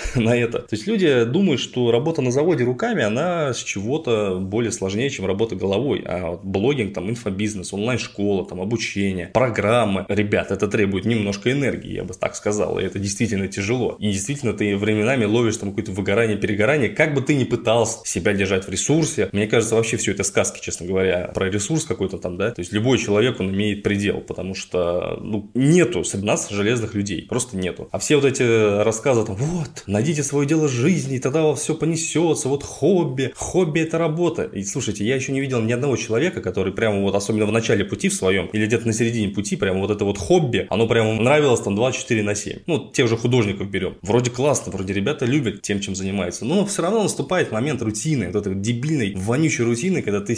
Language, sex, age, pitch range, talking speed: Russian, male, 20-39, 100-135 Hz, 210 wpm